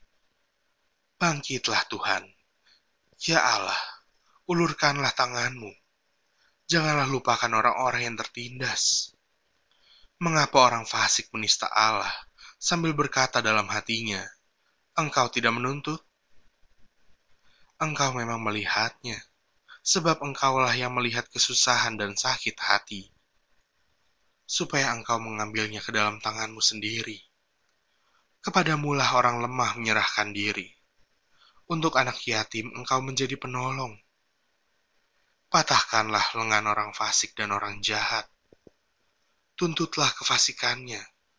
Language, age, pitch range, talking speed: Indonesian, 20-39, 110-135 Hz, 90 wpm